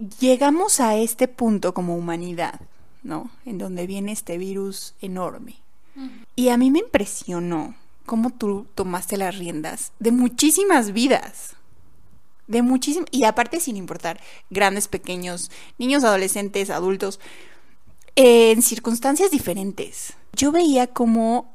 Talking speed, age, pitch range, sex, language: 125 wpm, 20-39, 200-260 Hz, female, Spanish